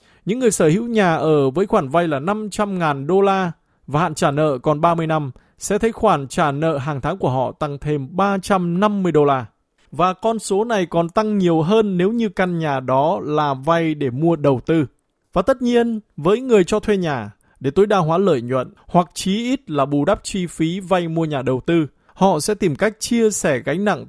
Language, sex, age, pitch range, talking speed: Vietnamese, male, 20-39, 145-195 Hz, 220 wpm